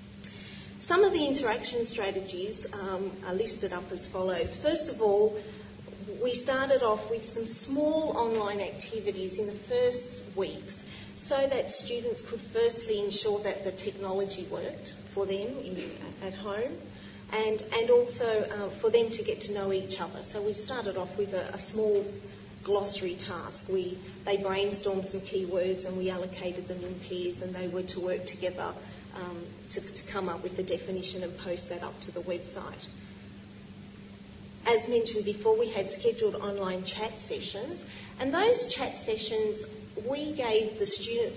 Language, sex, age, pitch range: English, female, 40-59, 190-225 Hz